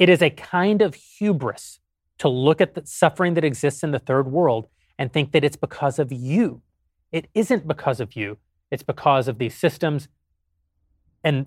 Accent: American